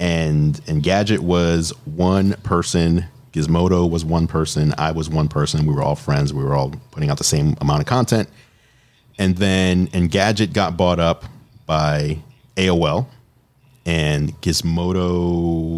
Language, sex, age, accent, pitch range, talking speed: English, male, 30-49, American, 80-120 Hz, 150 wpm